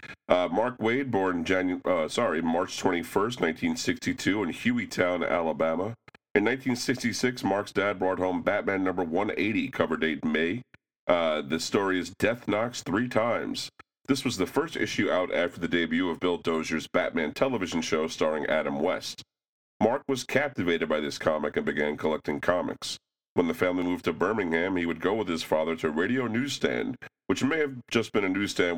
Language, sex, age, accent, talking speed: English, male, 40-59, American, 175 wpm